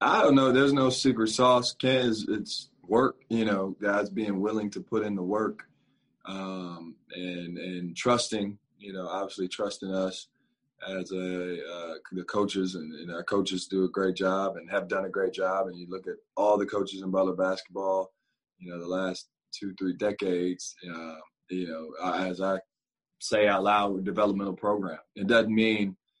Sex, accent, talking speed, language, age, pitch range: male, American, 185 wpm, English, 20-39, 95-105 Hz